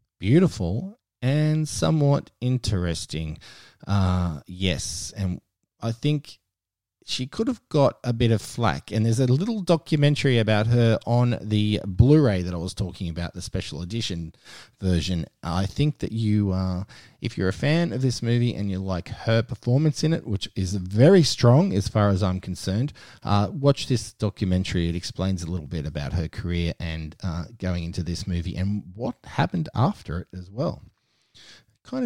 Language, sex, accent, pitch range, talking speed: English, male, Australian, 90-125 Hz, 170 wpm